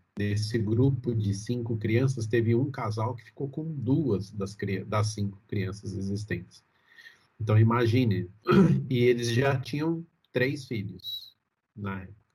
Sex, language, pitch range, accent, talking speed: male, Portuguese, 105-130 Hz, Brazilian, 125 wpm